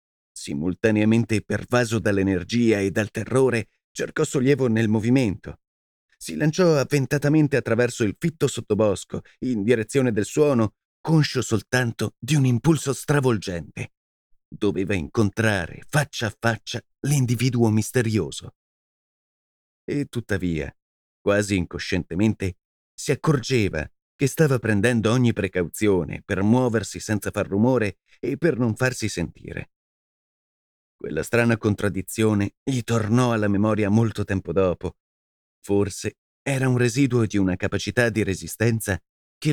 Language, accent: Italian, native